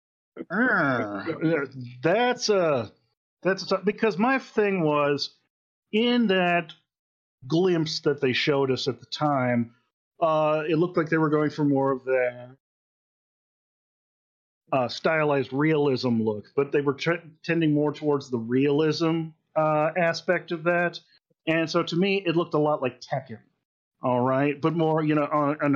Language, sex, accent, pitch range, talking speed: English, male, American, 130-165 Hz, 150 wpm